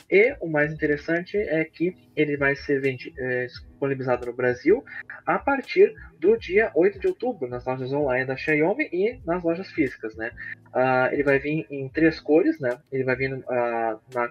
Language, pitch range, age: Portuguese, 120-160 Hz, 20-39